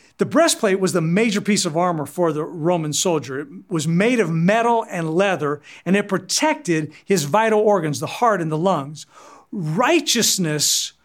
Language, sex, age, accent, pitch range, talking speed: English, male, 50-69, American, 160-215 Hz, 170 wpm